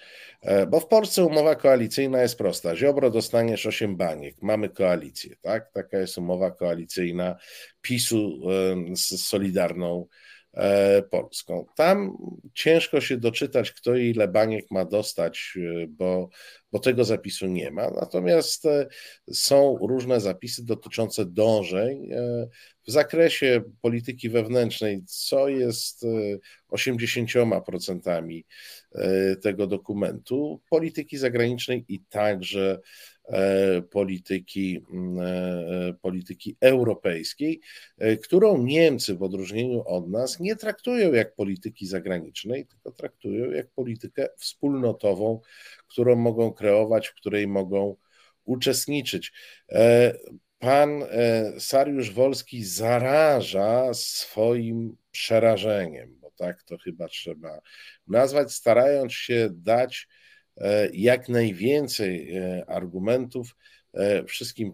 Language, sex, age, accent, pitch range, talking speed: Polish, male, 50-69, native, 95-125 Hz, 95 wpm